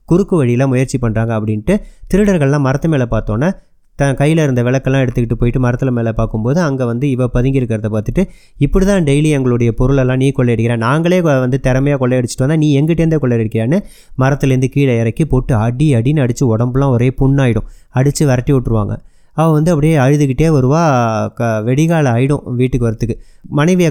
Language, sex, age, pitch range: Tamil, male, 30-49, 120-145 Hz